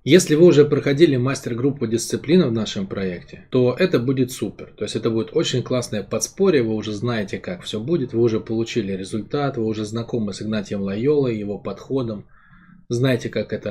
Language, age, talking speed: Russian, 20-39, 180 wpm